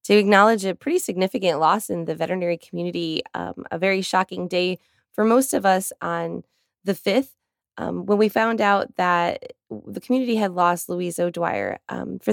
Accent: American